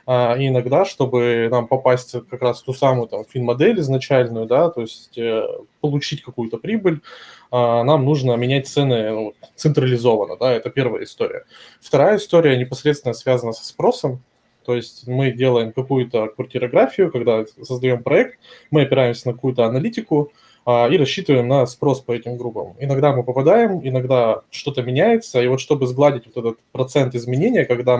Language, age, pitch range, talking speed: Russian, 20-39, 120-140 Hz, 160 wpm